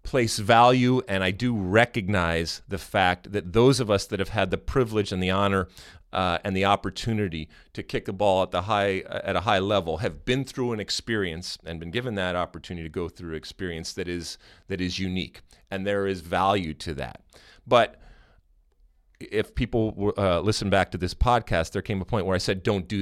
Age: 40-59